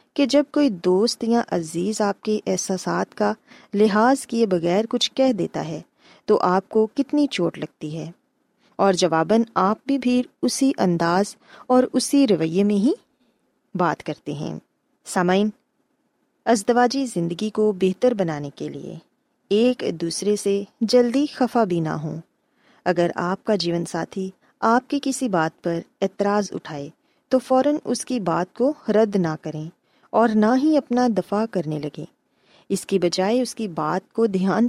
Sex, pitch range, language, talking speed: female, 175-250 Hz, Urdu, 155 wpm